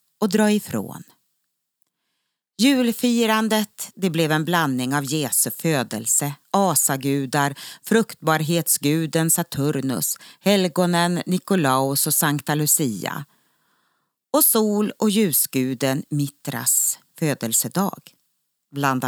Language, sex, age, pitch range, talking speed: Swedish, female, 40-59, 140-190 Hz, 80 wpm